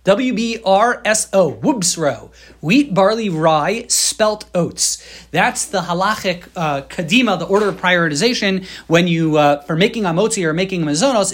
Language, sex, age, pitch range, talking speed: English, male, 30-49, 170-215 Hz, 160 wpm